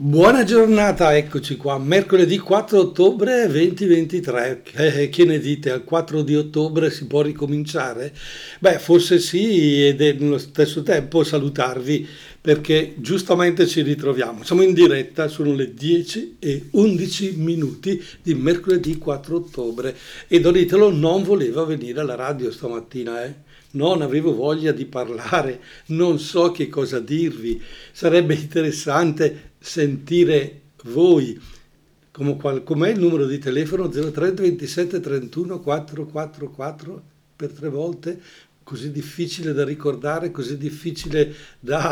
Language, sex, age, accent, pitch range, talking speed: Italian, male, 60-79, native, 145-175 Hz, 125 wpm